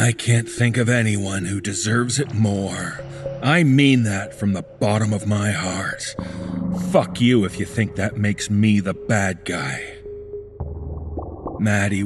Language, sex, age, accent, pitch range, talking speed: English, male, 40-59, American, 100-130 Hz, 150 wpm